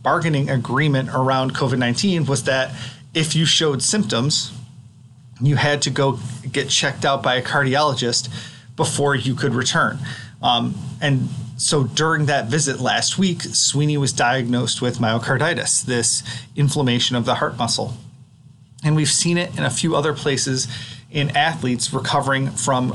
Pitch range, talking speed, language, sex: 125-150 Hz, 145 wpm, English, male